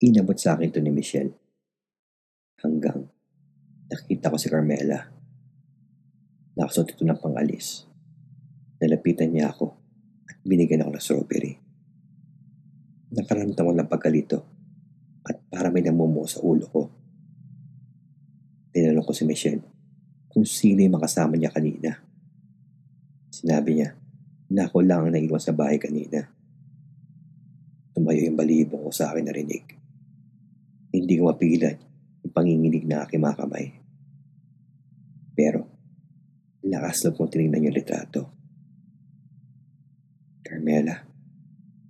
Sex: male